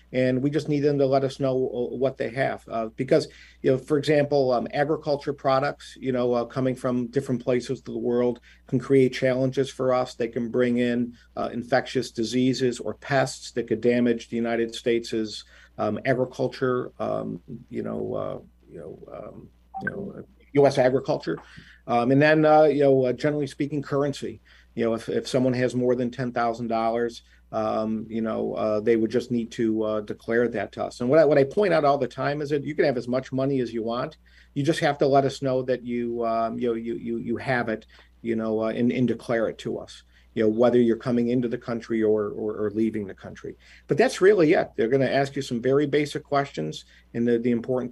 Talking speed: 220 wpm